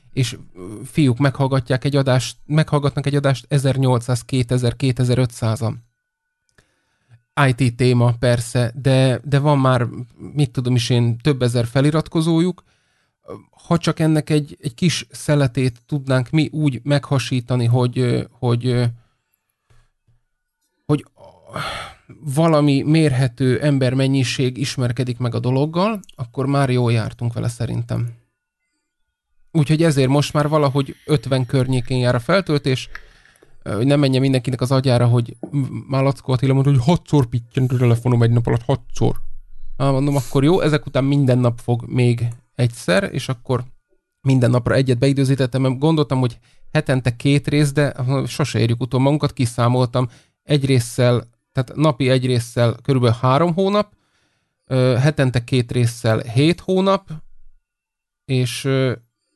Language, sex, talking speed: Hungarian, male, 125 wpm